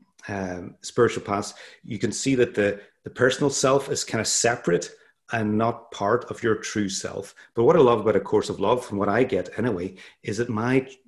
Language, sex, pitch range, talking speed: English, male, 100-125 Hz, 210 wpm